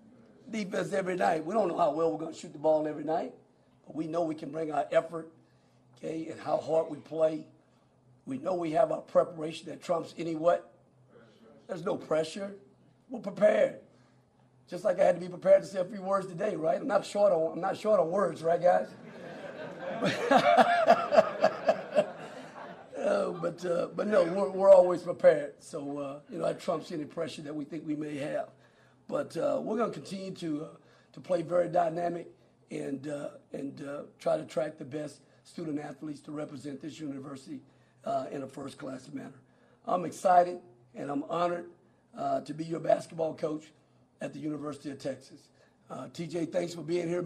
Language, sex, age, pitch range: English, male, 50-69, 155-185 Hz